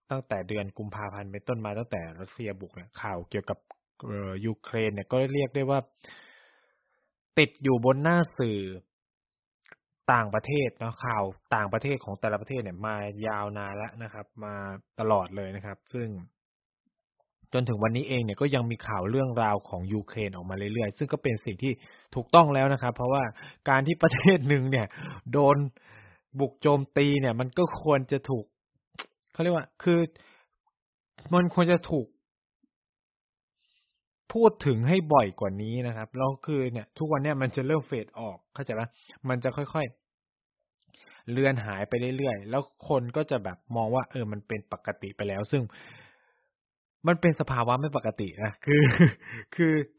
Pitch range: 105-140 Hz